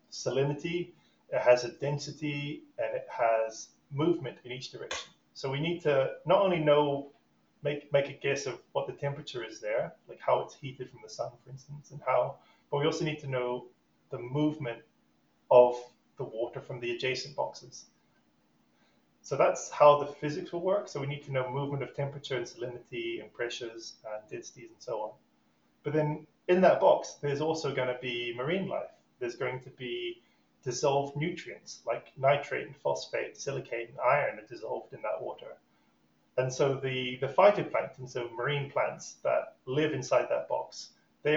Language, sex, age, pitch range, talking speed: English, male, 30-49, 125-150 Hz, 180 wpm